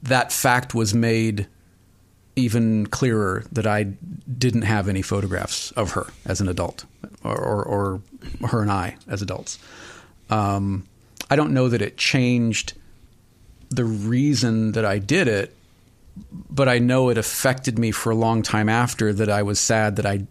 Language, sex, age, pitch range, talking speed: English, male, 40-59, 95-120 Hz, 165 wpm